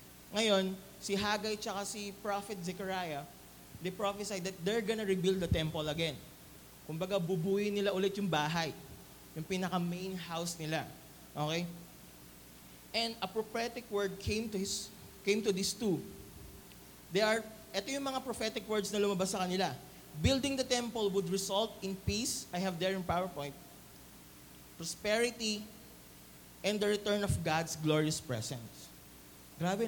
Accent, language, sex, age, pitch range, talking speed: Filipino, English, male, 20-39, 150-205 Hz, 145 wpm